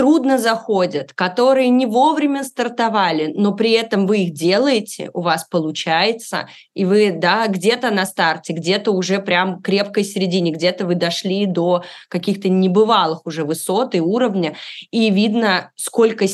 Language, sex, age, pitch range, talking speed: Russian, female, 20-39, 185-230 Hz, 145 wpm